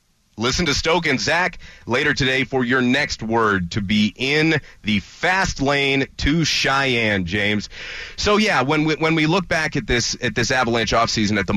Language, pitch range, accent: English, 100-135 Hz, American